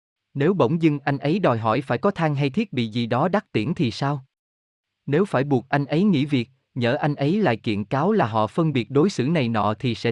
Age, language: 20-39, Vietnamese